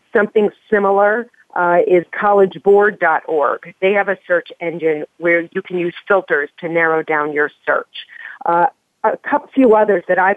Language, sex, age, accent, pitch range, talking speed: English, female, 50-69, American, 170-215 Hz, 150 wpm